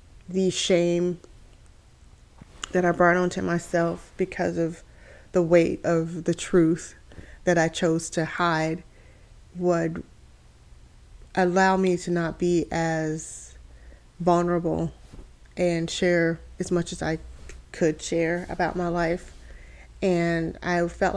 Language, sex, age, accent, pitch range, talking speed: English, female, 20-39, American, 155-175 Hz, 115 wpm